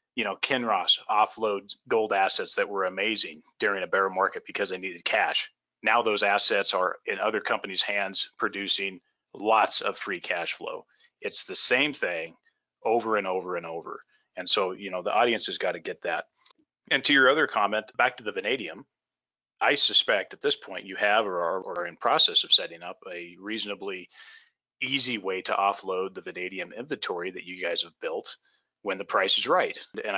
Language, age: English, 30-49